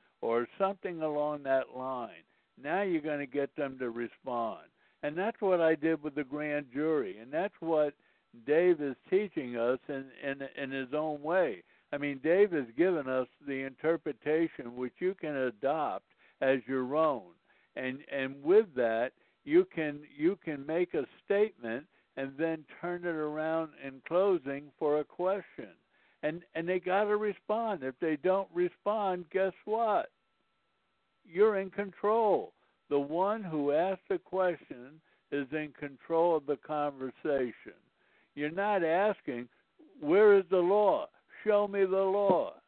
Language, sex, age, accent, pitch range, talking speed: English, male, 60-79, American, 145-200 Hz, 155 wpm